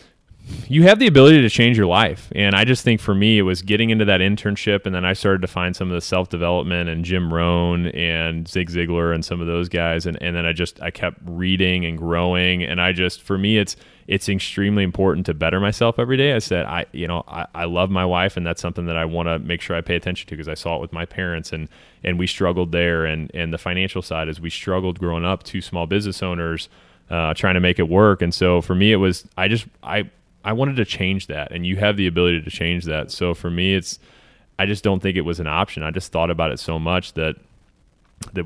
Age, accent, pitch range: 20-39, American, 85-95 Hz